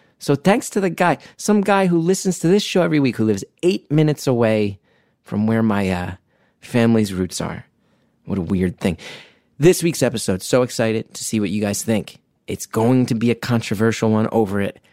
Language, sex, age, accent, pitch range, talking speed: English, male, 30-49, American, 110-140 Hz, 200 wpm